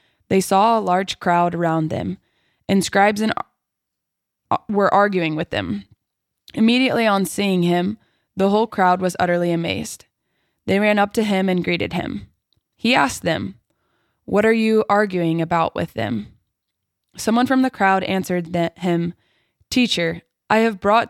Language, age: English, 20-39